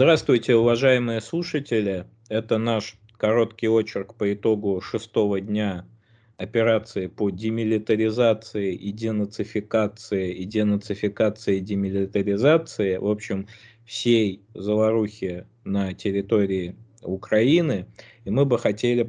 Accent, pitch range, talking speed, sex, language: native, 100-115 Hz, 95 wpm, male, Russian